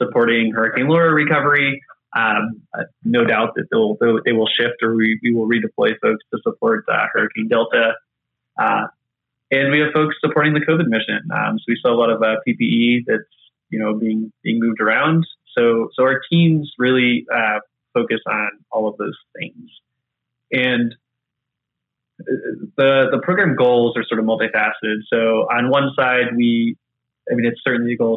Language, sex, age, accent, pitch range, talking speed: English, male, 20-39, American, 110-130 Hz, 170 wpm